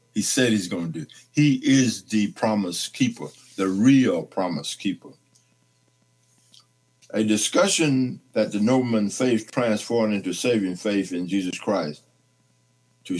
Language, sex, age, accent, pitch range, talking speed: English, male, 60-79, American, 95-125 Hz, 130 wpm